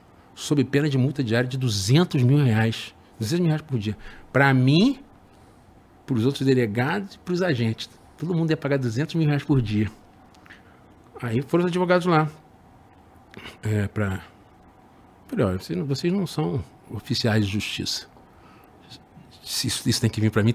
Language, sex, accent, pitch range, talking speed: Portuguese, male, Brazilian, 105-145 Hz, 165 wpm